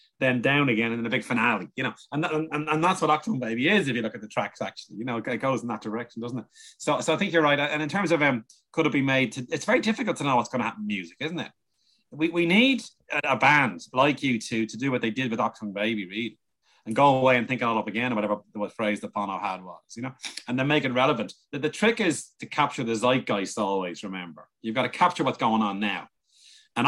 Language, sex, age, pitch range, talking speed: English, male, 30-49, 115-150 Hz, 270 wpm